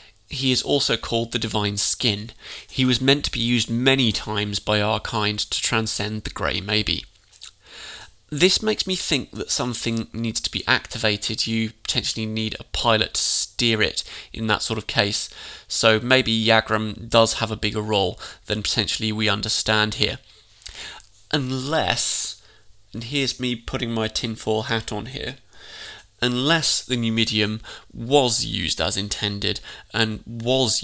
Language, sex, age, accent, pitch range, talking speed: English, male, 20-39, British, 105-120 Hz, 155 wpm